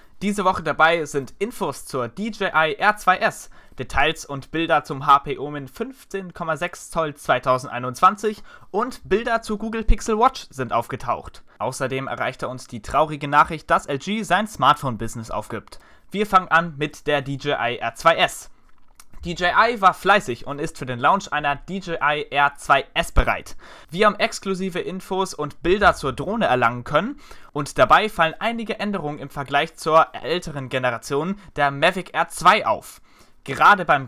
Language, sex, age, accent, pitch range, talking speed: German, male, 20-39, German, 140-190 Hz, 140 wpm